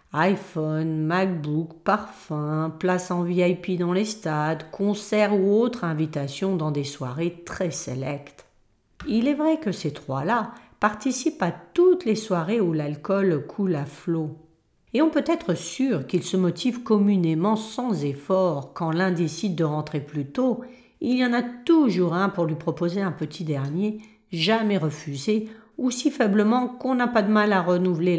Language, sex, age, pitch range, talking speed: French, female, 40-59, 150-220 Hz, 160 wpm